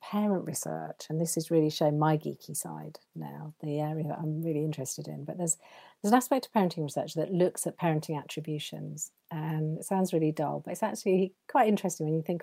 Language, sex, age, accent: English, female, 40-59, British